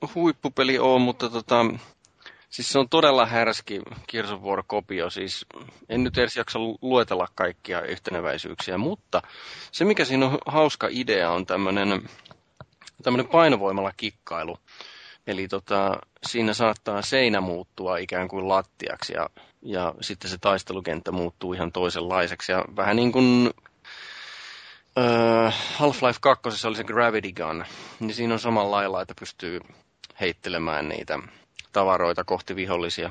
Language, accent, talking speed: Finnish, native, 130 wpm